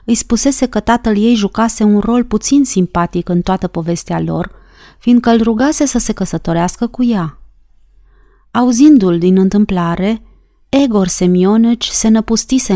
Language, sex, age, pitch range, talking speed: Romanian, female, 30-49, 180-235 Hz, 135 wpm